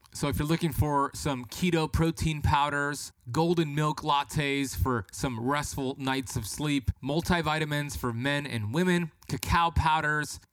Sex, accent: male, American